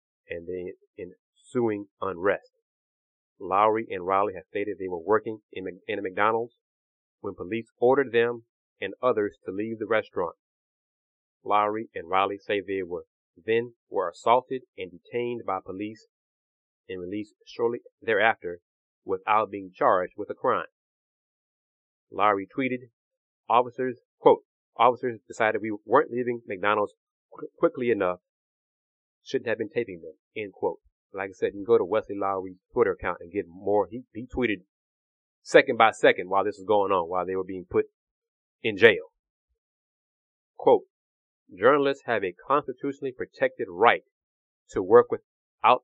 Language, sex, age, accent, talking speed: English, male, 30-49, American, 145 wpm